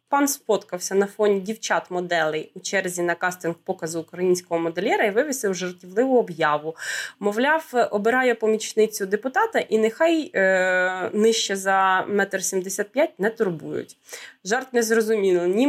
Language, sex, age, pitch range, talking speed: Russian, female, 20-39, 195-250 Hz, 125 wpm